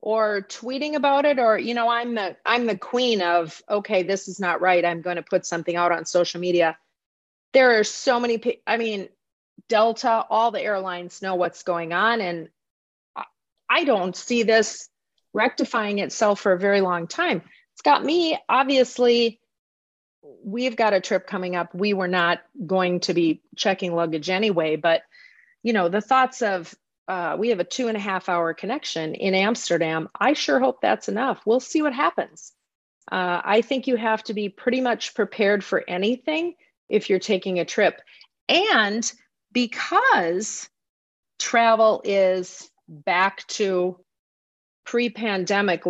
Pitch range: 180-240 Hz